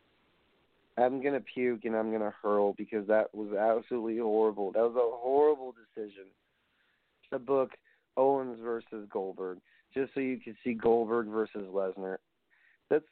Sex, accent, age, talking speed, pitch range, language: male, American, 30-49, 150 wpm, 115-155 Hz, English